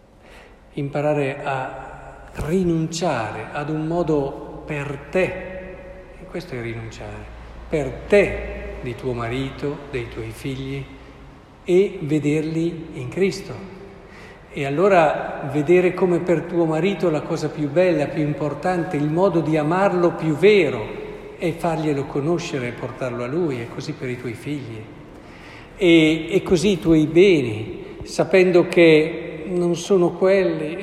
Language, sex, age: Italian, male, 50-69